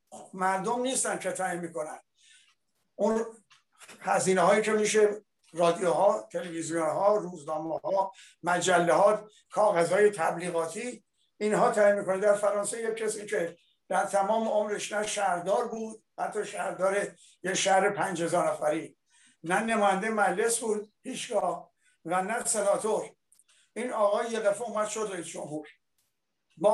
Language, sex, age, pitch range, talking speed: Persian, male, 60-79, 180-215 Hz, 110 wpm